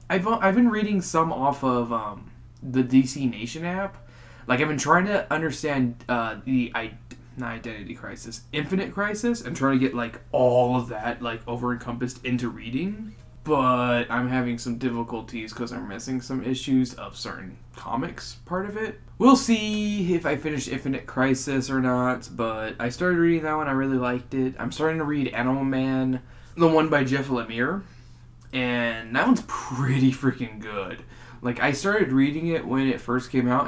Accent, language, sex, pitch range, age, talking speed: American, English, male, 120-150 Hz, 20-39, 180 wpm